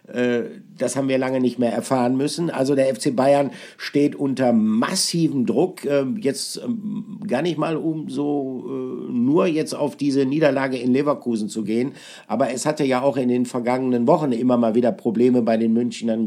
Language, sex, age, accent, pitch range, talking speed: German, male, 50-69, German, 125-150 Hz, 175 wpm